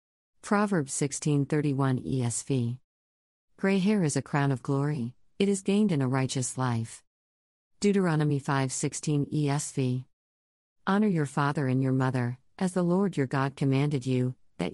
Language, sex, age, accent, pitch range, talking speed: English, female, 50-69, American, 125-155 Hz, 140 wpm